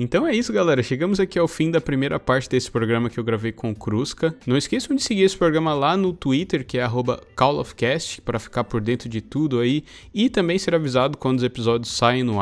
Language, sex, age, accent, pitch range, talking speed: Portuguese, male, 20-39, Brazilian, 120-175 Hz, 240 wpm